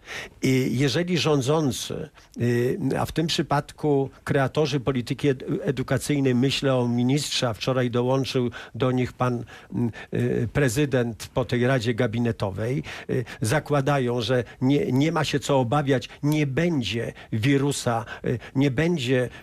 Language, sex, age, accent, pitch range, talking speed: Polish, male, 50-69, native, 130-160 Hz, 115 wpm